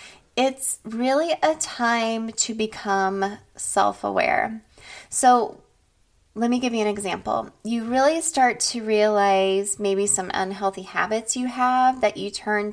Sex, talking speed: female, 130 wpm